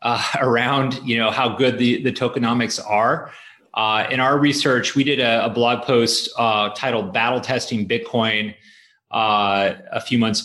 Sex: male